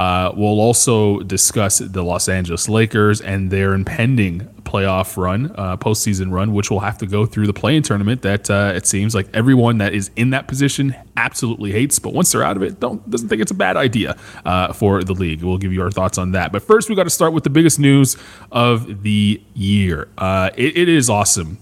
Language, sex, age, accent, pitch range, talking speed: English, male, 20-39, American, 100-120 Hz, 220 wpm